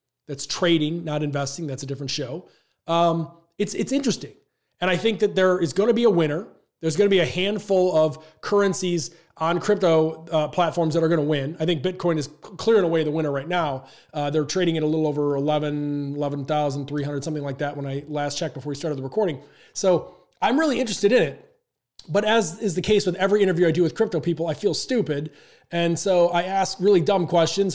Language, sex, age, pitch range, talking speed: English, male, 30-49, 150-185 Hz, 220 wpm